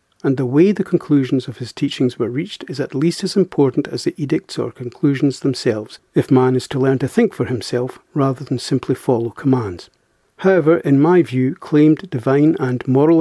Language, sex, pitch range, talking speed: English, male, 130-155 Hz, 195 wpm